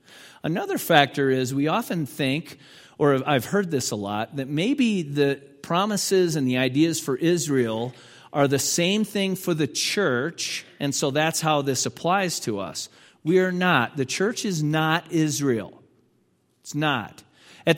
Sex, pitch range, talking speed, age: male, 130-160 Hz, 160 wpm, 40-59